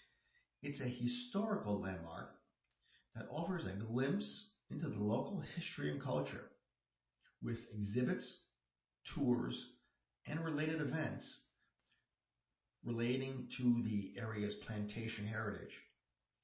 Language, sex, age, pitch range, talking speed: English, male, 50-69, 105-130 Hz, 95 wpm